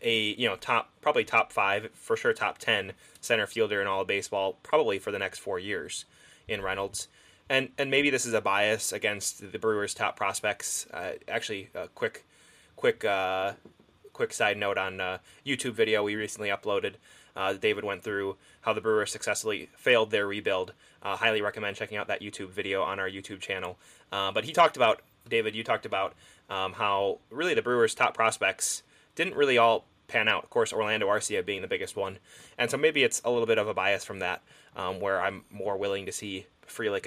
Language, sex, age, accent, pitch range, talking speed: English, male, 20-39, American, 100-150 Hz, 205 wpm